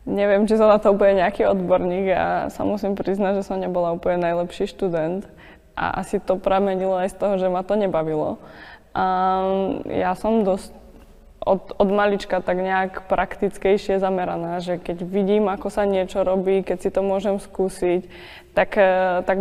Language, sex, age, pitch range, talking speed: Czech, female, 20-39, 180-200 Hz, 175 wpm